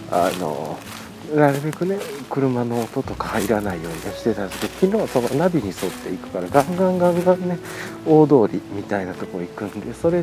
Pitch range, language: 110-175 Hz, Japanese